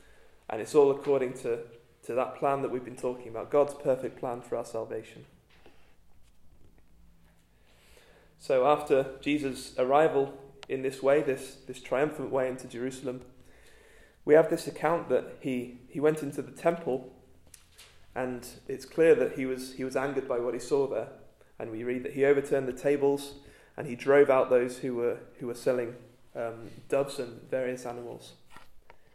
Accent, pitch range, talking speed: British, 125-145 Hz, 165 wpm